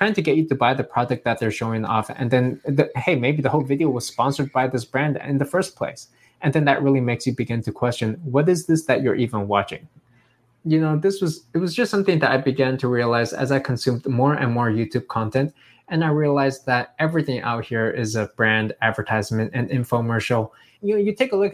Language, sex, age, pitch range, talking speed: English, male, 20-39, 120-140 Hz, 235 wpm